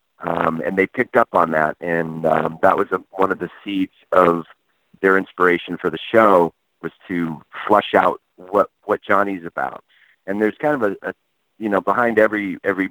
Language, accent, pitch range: English, American, 85-100 Hz